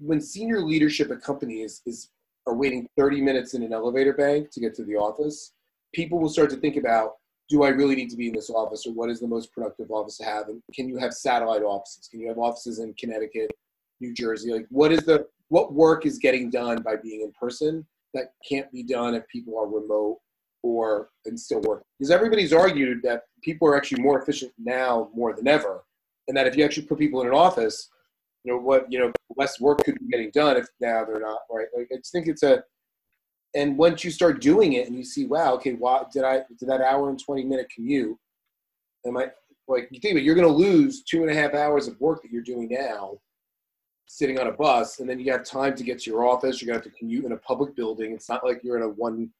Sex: male